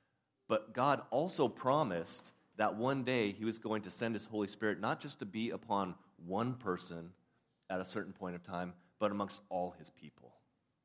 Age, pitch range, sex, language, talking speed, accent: 30-49, 90-110 Hz, male, English, 185 wpm, American